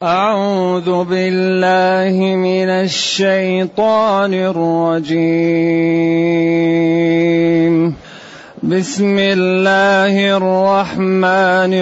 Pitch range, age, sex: 170-205 Hz, 30-49, male